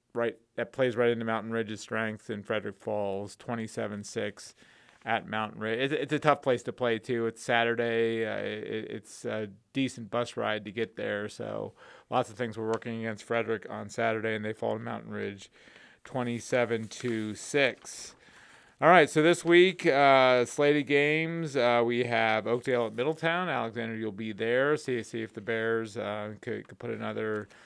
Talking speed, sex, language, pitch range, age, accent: 175 wpm, male, English, 115-140 Hz, 30-49, American